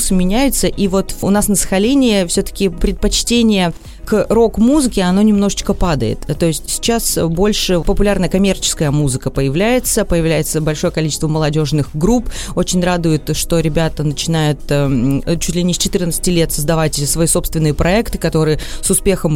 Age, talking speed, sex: 30-49, 145 wpm, female